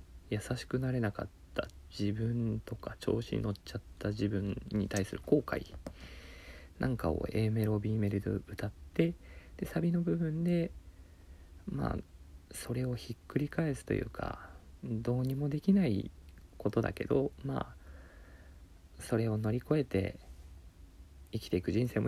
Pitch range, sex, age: 80-115 Hz, male, 40-59